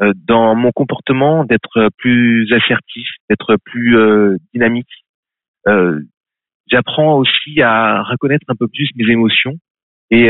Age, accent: 30-49, French